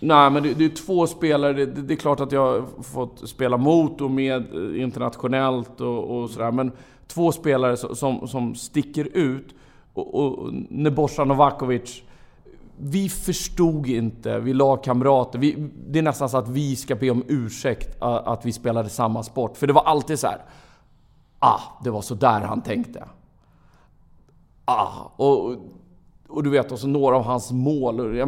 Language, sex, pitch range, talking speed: English, male, 125-155 Hz, 170 wpm